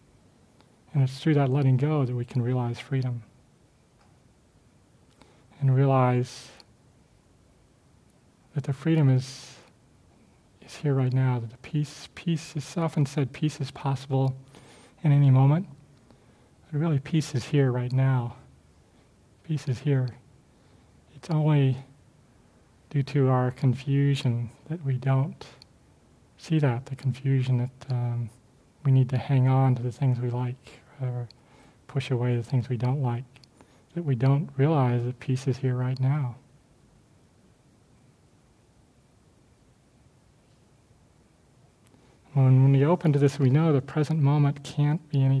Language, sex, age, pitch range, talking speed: English, male, 40-59, 125-140 Hz, 130 wpm